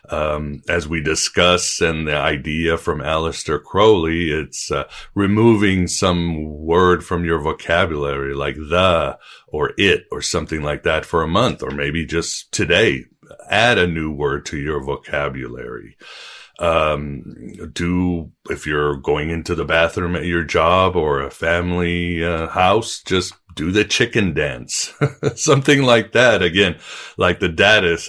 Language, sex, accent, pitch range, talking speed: English, male, American, 75-90 Hz, 145 wpm